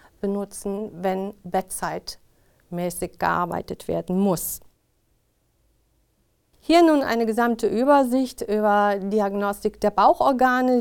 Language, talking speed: German, 85 wpm